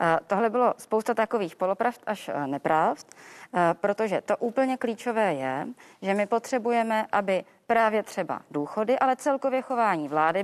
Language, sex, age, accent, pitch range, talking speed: Czech, female, 30-49, native, 175-235 Hz, 130 wpm